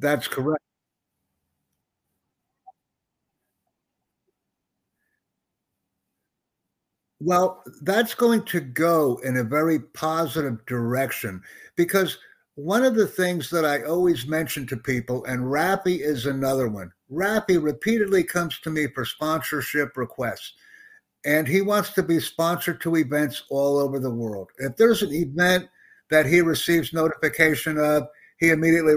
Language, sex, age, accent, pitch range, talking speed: English, male, 60-79, American, 135-180 Hz, 120 wpm